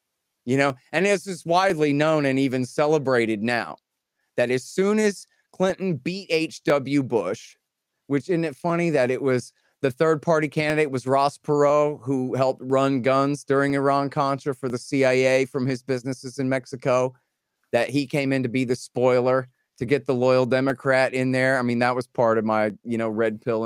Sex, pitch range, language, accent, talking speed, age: male, 120-160 Hz, English, American, 185 wpm, 30-49